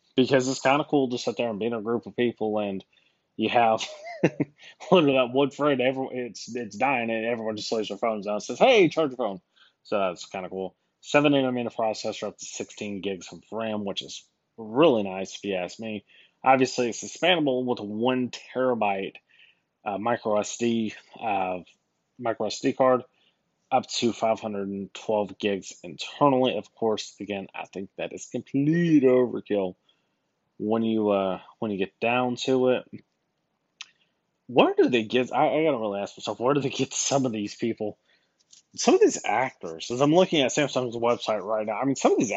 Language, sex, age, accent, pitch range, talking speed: English, male, 20-39, American, 105-135 Hz, 195 wpm